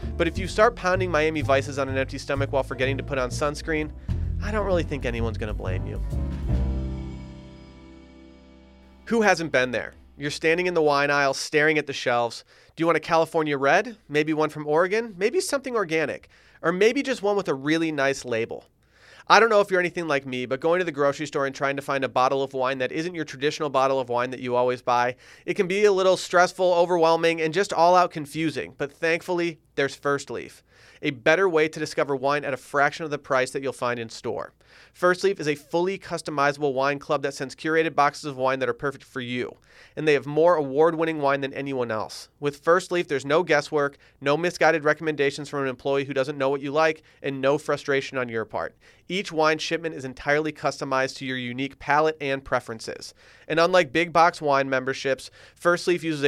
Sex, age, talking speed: male, 30-49, 215 wpm